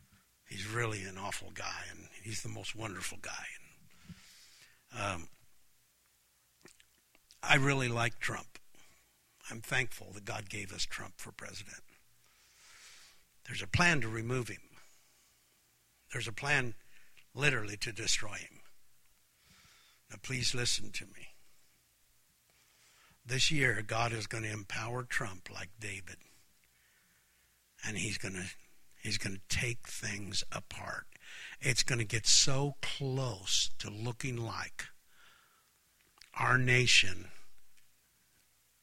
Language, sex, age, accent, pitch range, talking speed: English, male, 60-79, American, 95-120 Hz, 115 wpm